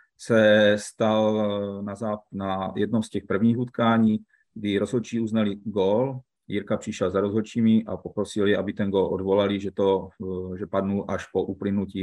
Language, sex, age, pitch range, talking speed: Czech, male, 40-59, 100-110 Hz, 145 wpm